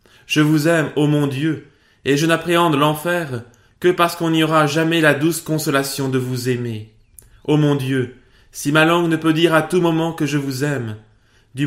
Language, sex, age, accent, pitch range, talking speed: French, male, 20-39, French, 110-145 Hz, 210 wpm